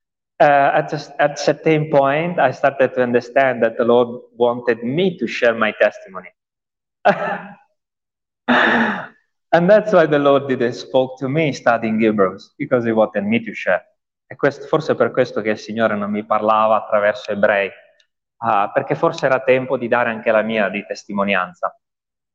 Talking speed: 170 wpm